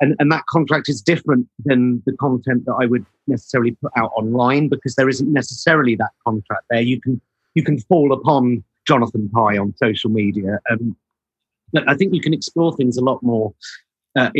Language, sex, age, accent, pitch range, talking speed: English, male, 50-69, British, 115-150 Hz, 190 wpm